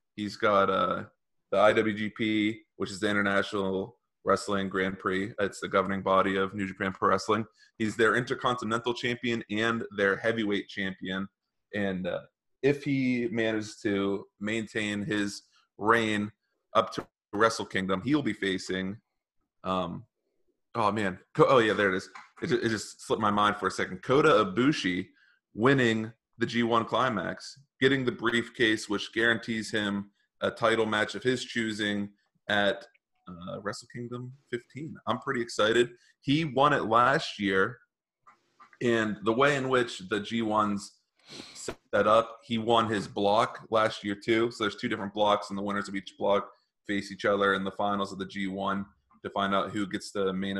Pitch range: 100-115 Hz